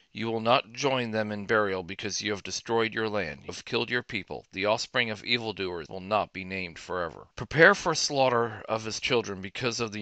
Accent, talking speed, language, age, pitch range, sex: American, 215 wpm, English, 40-59, 95-115 Hz, male